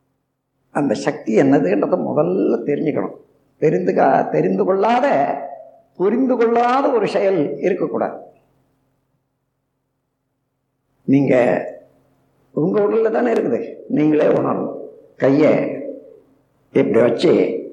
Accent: native